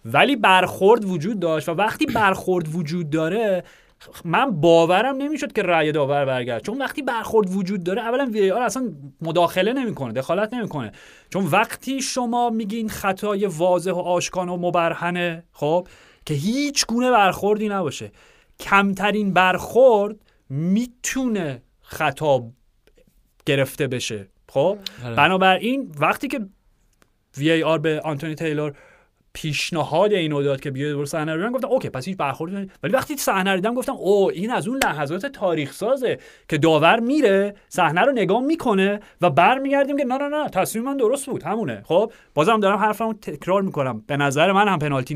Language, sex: Persian, male